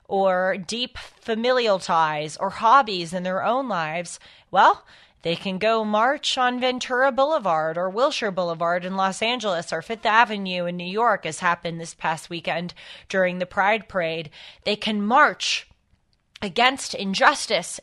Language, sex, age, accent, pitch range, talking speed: English, female, 20-39, American, 175-230 Hz, 150 wpm